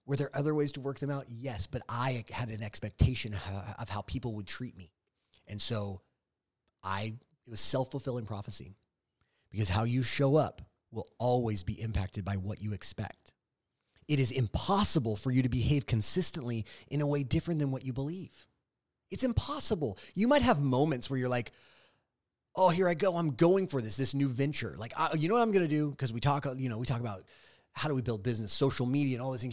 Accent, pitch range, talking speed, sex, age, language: American, 110-140 Hz, 210 wpm, male, 30-49, English